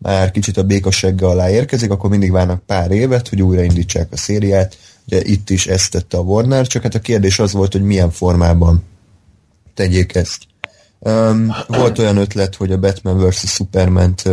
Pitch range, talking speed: 95-105 Hz, 180 wpm